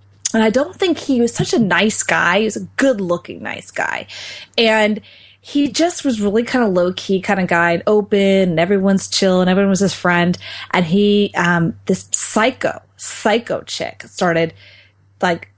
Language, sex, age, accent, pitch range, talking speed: English, female, 20-39, American, 175-225 Hz, 175 wpm